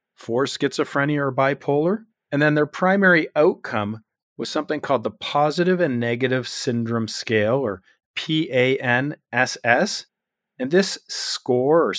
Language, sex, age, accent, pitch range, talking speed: English, male, 40-59, American, 120-165 Hz, 120 wpm